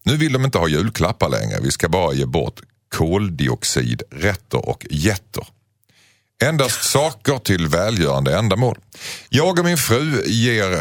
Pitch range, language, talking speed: 80-120 Hz, Swedish, 140 wpm